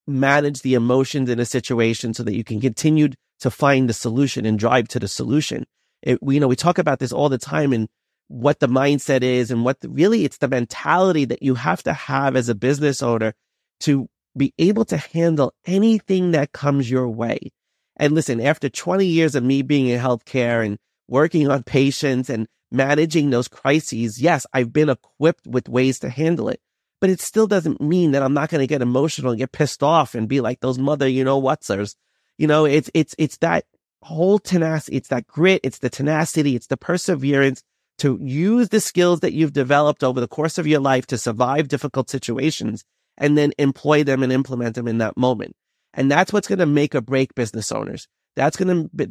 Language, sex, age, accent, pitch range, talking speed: English, male, 30-49, American, 125-155 Hz, 205 wpm